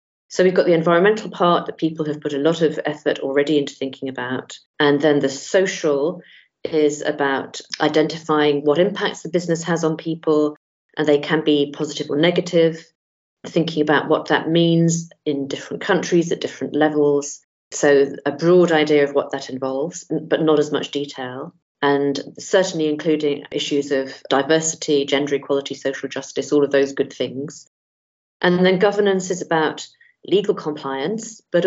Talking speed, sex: 165 wpm, female